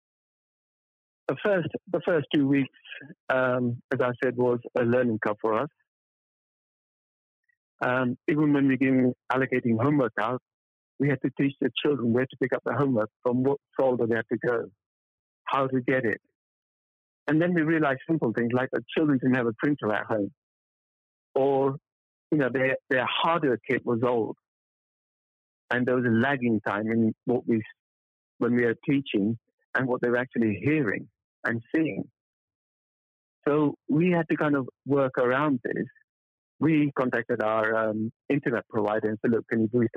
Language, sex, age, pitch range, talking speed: English, male, 60-79, 110-140 Hz, 170 wpm